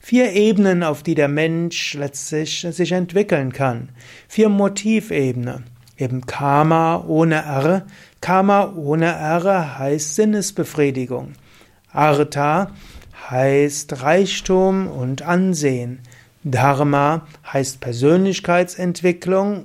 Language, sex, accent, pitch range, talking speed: German, male, German, 140-185 Hz, 90 wpm